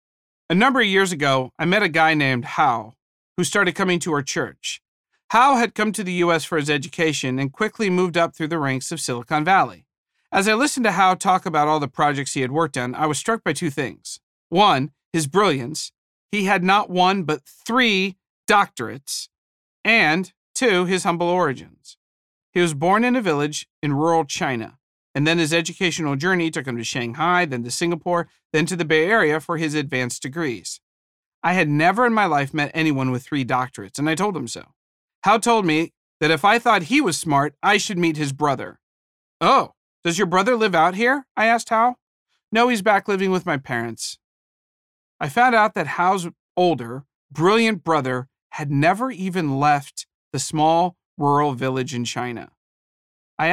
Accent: American